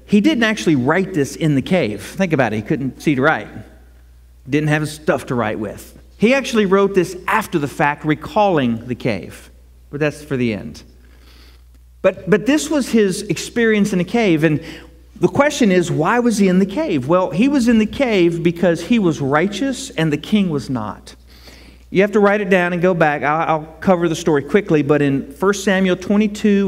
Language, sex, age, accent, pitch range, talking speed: English, male, 40-59, American, 135-200 Hz, 205 wpm